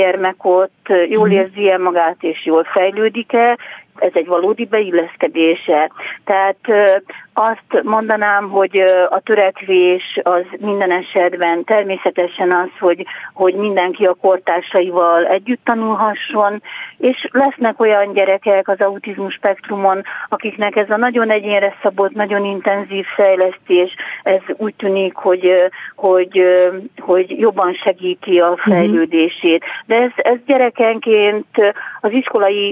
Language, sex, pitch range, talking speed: Hungarian, female, 185-210 Hz, 115 wpm